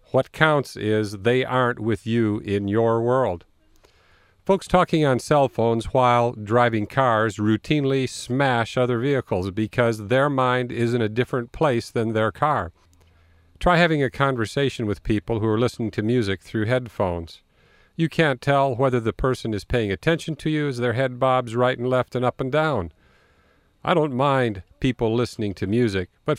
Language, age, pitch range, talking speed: English, 50-69, 105-130 Hz, 175 wpm